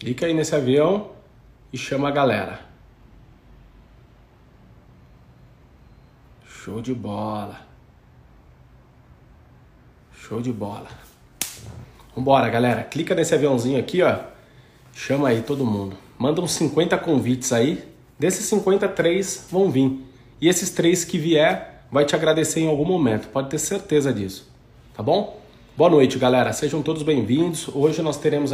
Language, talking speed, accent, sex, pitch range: Portuguese, 125 wpm, Brazilian, male, 115-145 Hz